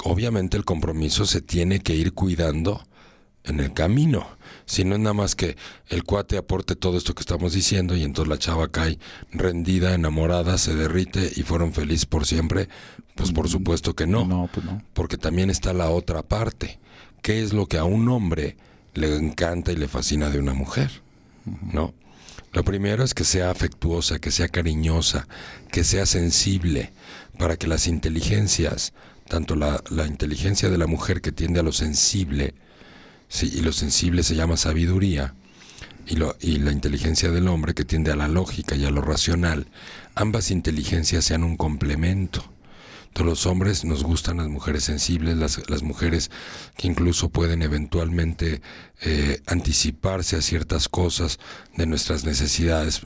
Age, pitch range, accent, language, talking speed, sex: 50-69, 80-90 Hz, Mexican, Spanish, 160 wpm, male